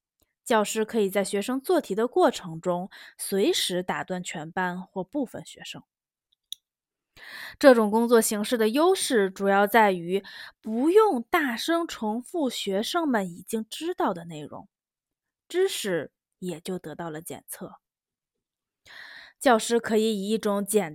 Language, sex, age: Chinese, female, 20-39